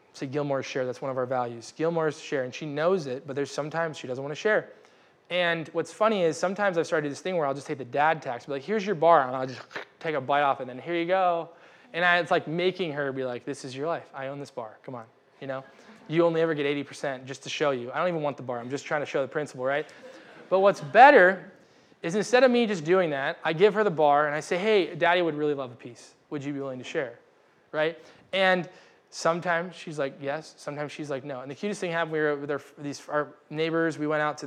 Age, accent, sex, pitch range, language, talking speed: 20-39, American, male, 140-165 Hz, English, 270 wpm